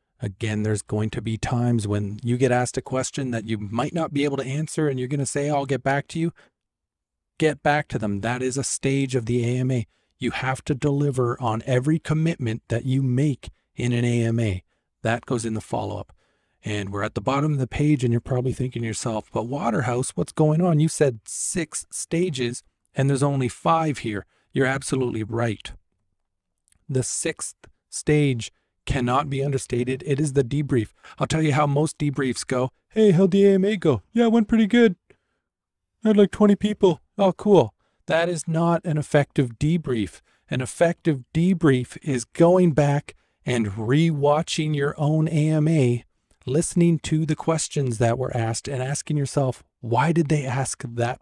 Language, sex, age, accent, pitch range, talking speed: English, male, 40-59, American, 120-155 Hz, 185 wpm